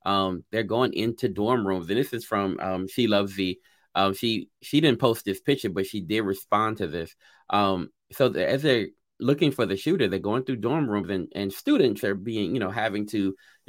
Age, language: 30-49, English